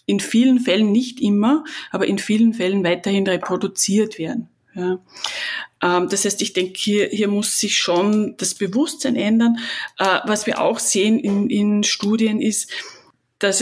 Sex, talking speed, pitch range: female, 150 wpm, 185-225 Hz